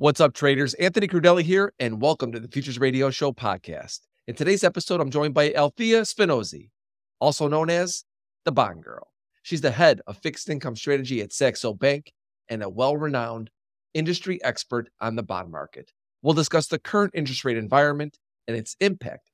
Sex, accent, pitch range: male, American, 120-170 Hz